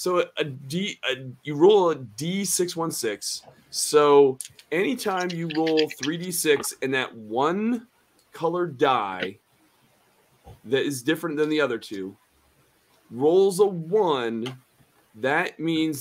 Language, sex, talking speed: English, male, 115 wpm